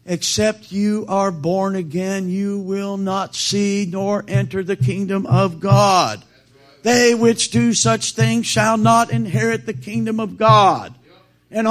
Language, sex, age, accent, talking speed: English, male, 50-69, American, 145 wpm